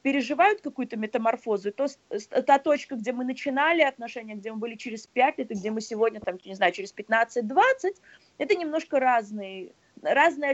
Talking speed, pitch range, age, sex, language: 165 wpm, 215-275 Hz, 20-39, female, English